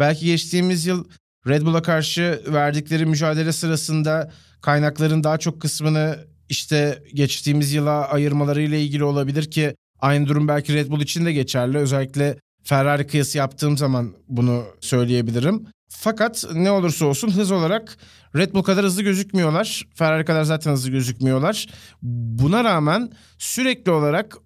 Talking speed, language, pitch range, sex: 135 wpm, Turkish, 145-185 Hz, male